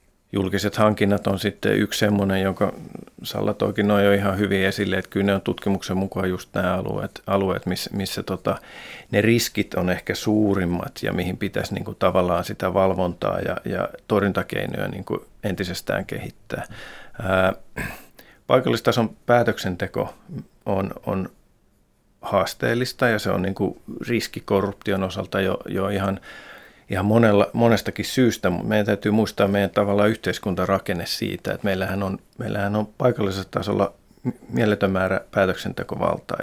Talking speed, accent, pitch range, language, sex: 130 wpm, native, 95-105 Hz, Finnish, male